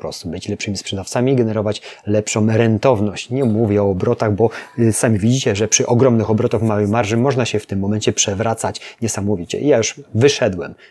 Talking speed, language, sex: 175 wpm, Polish, male